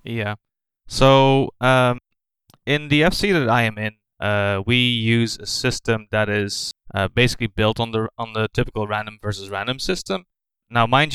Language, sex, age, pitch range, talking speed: English, male, 20-39, 105-135 Hz, 170 wpm